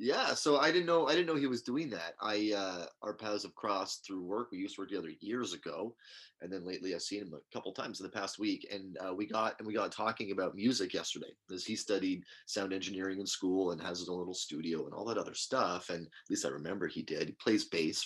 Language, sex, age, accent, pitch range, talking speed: English, male, 30-49, American, 95-140 Hz, 265 wpm